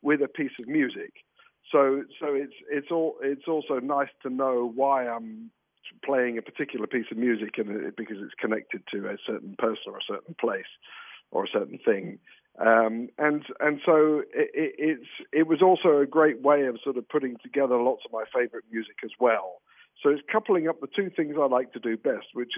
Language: Dutch